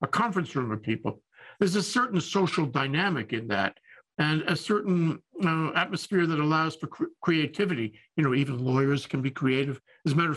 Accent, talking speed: American, 190 wpm